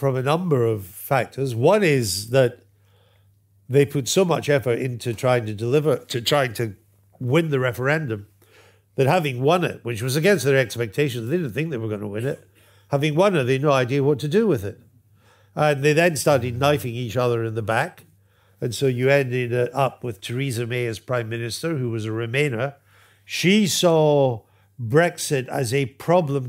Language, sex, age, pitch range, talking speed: English, male, 50-69, 110-145 Hz, 190 wpm